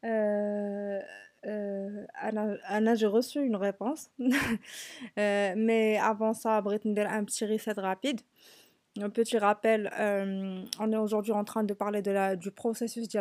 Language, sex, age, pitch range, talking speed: Arabic, female, 20-39, 200-230 Hz, 155 wpm